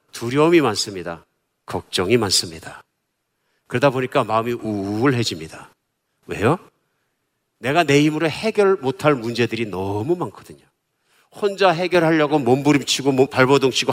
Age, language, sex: 50-69, Korean, male